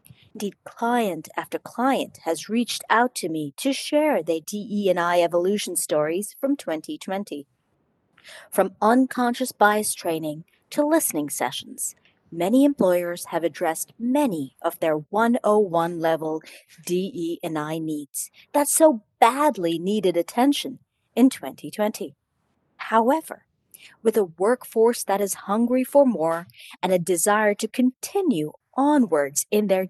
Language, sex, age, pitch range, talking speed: English, female, 40-59, 170-265 Hz, 115 wpm